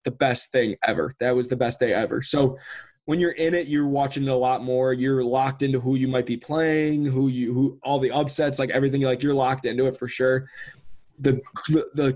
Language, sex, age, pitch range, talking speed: English, male, 20-39, 125-145 Hz, 225 wpm